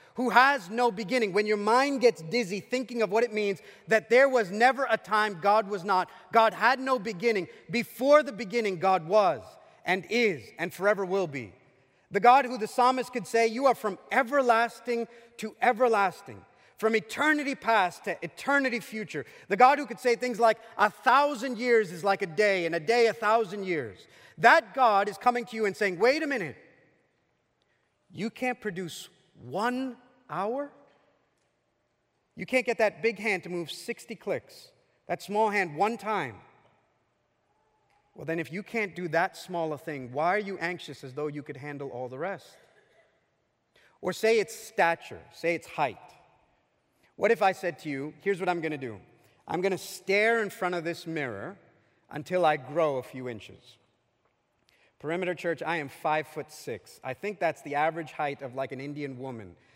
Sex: male